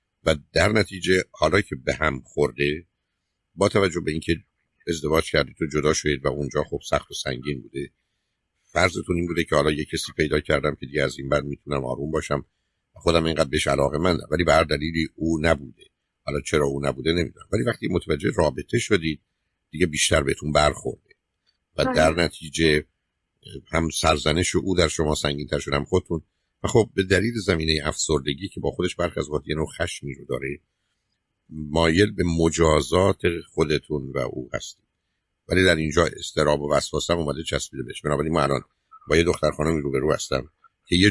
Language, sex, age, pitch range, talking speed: Persian, male, 50-69, 70-85 Hz, 175 wpm